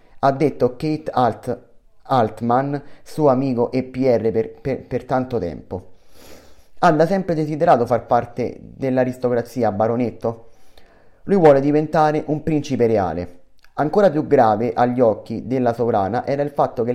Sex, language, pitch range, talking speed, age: male, Italian, 115-140 Hz, 135 wpm, 30-49